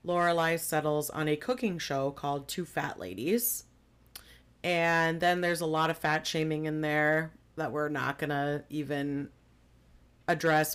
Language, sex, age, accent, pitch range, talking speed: English, female, 30-49, American, 145-170 Hz, 150 wpm